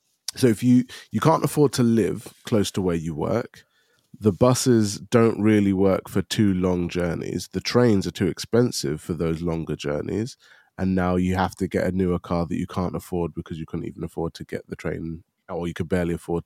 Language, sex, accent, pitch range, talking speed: English, male, British, 85-105 Hz, 210 wpm